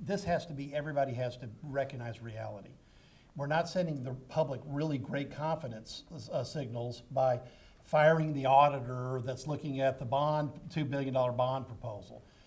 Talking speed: 160 wpm